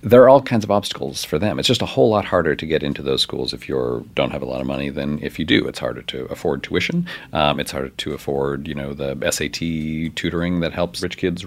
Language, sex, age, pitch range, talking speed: English, male, 40-59, 75-105 Hz, 260 wpm